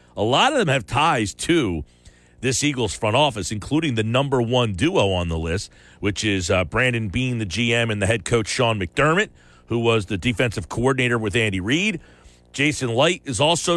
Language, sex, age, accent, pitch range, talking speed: English, male, 40-59, American, 100-150 Hz, 190 wpm